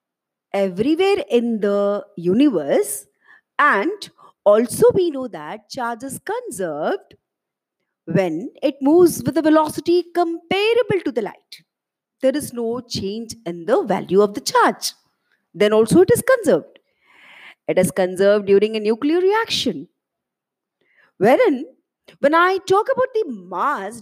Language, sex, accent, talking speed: Hindi, female, native, 125 wpm